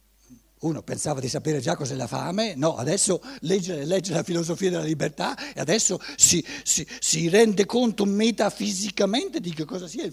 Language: Italian